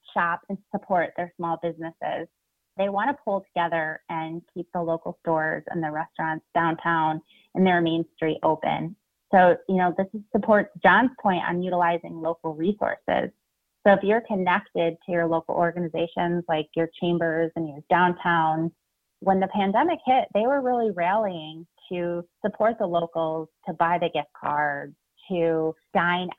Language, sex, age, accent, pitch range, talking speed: English, female, 30-49, American, 165-200 Hz, 155 wpm